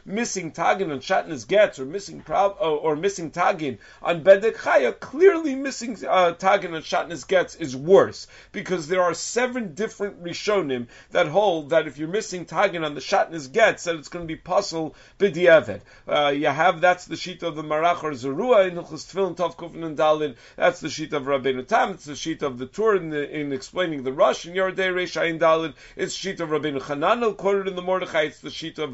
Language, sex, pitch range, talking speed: English, male, 155-195 Hz, 195 wpm